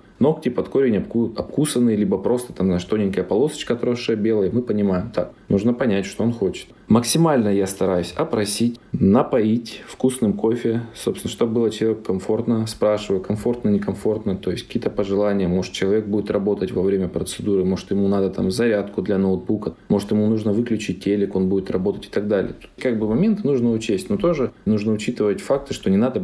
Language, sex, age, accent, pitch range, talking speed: Russian, male, 20-39, native, 100-125 Hz, 175 wpm